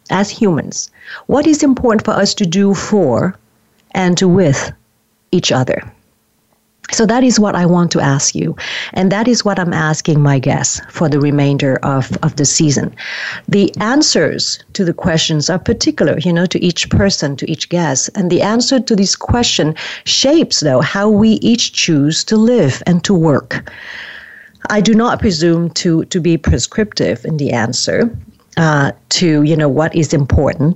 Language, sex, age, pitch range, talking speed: English, female, 40-59, 150-195 Hz, 175 wpm